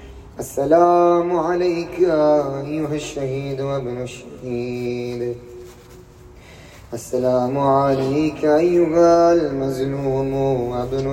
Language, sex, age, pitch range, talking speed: Urdu, male, 20-39, 125-170 Hz, 60 wpm